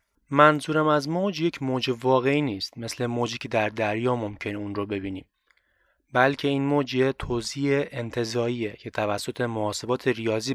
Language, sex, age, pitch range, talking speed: Persian, male, 20-39, 115-150 Hz, 140 wpm